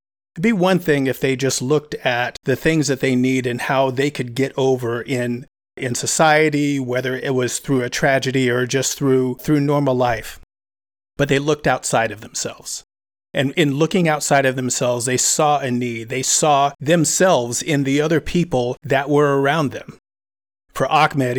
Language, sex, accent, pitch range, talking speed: English, male, American, 125-150 Hz, 180 wpm